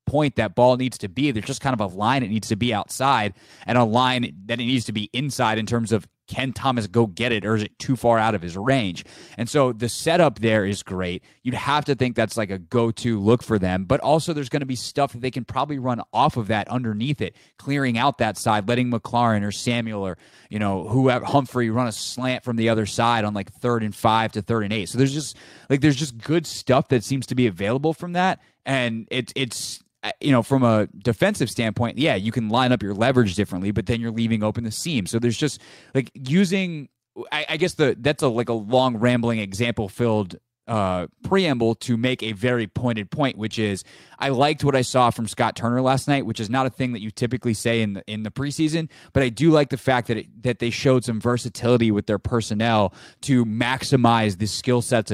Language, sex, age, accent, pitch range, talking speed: English, male, 20-39, American, 110-130 Hz, 240 wpm